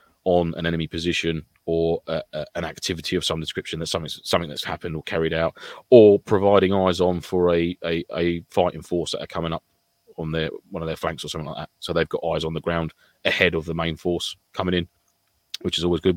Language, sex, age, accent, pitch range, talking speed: English, male, 30-49, British, 85-95 Hz, 230 wpm